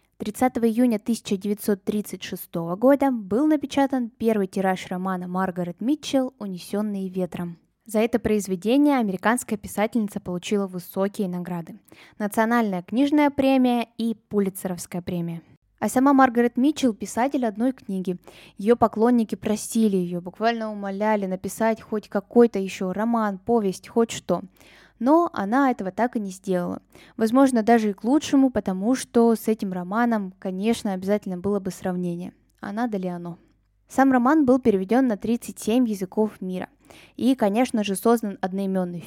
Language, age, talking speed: Russian, 10-29, 140 wpm